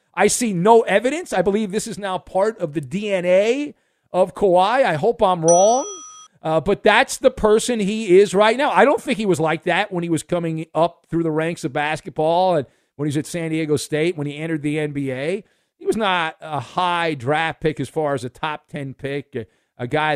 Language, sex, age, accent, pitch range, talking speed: English, male, 40-59, American, 155-220 Hz, 220 wpm